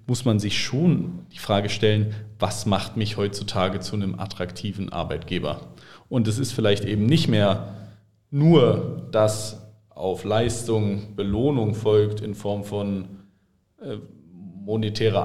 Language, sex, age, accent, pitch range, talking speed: German, male, 40-59, German, 105-120 Hz, 125 wpm